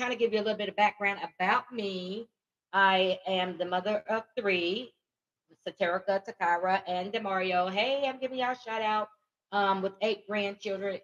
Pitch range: 175-205 Hz